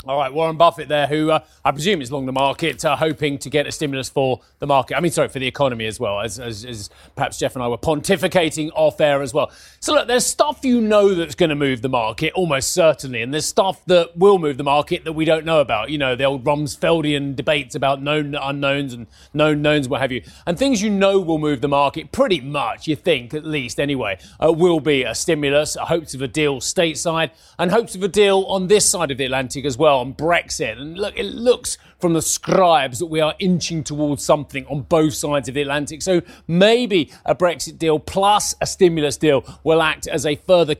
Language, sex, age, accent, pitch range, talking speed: English, male, 30-49, British, 140-165 Hz, 235 wpm